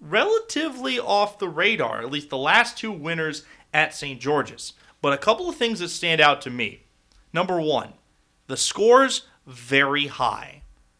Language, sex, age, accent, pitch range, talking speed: English, male, 30-49, American, 120-170 Hz, 160 wpm